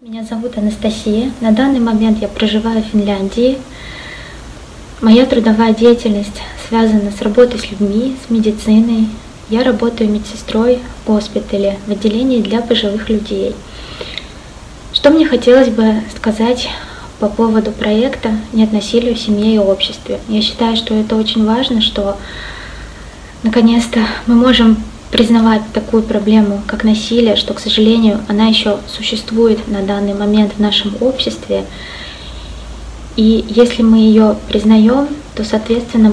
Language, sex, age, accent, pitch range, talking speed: Russian, female, 20-39, native, 210-230 Hz, 130 wpm